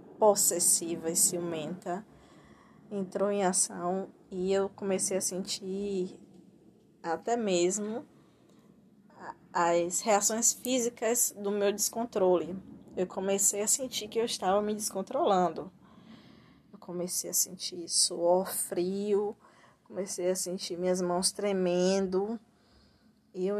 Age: 20-39